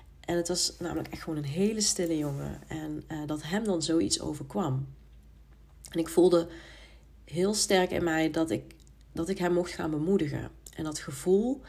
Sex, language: female, Dutch